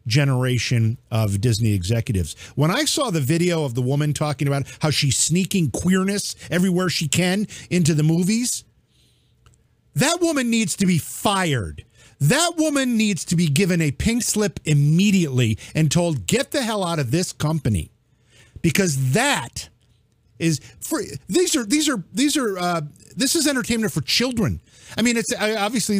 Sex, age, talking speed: male, 50-69, 160 wpm